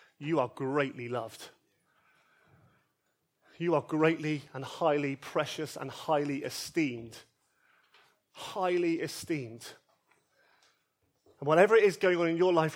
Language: English